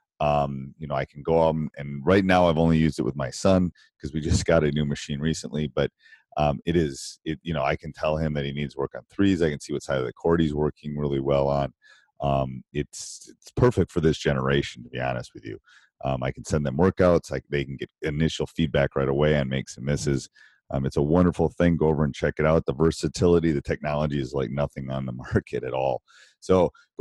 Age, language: 30-49, English